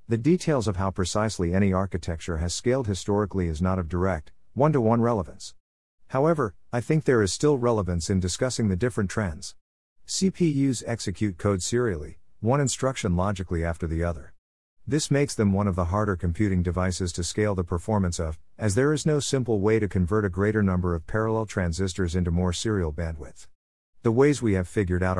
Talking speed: 180 wpm